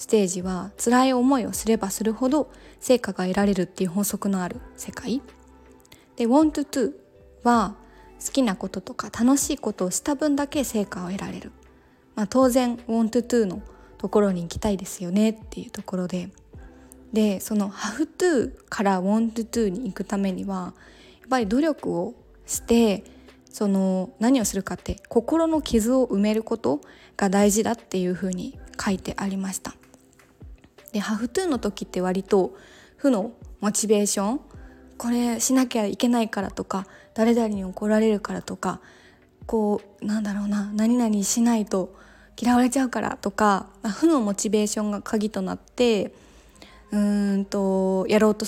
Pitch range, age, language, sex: 195-240 Hz, 20-39, Japanese, female